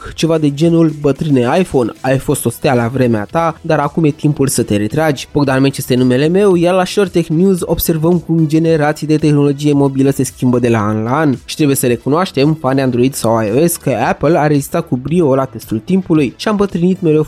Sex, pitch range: male, 130-165 Hz